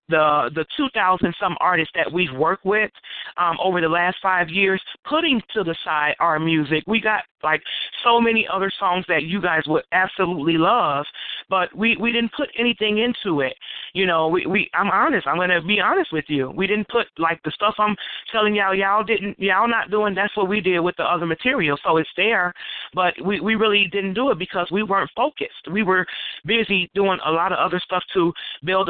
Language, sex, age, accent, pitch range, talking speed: English, male, 30-49, American, 160-205 Hz, 210 wpm